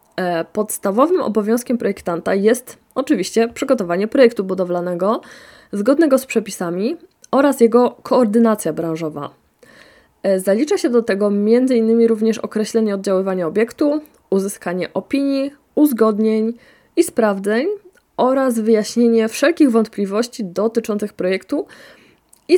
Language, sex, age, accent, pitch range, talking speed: Polish, female, 20-39, native, 195-255 Hz, 95 wpm